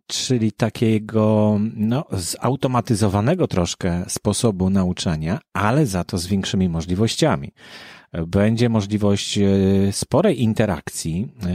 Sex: male